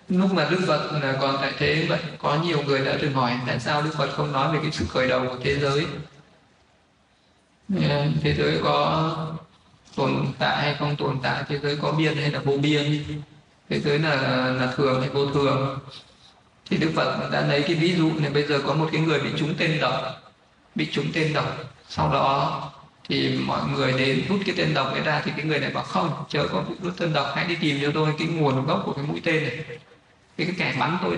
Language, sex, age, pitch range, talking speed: Vietnamese, male, 20-39, 135-160 Hz, 225 wpm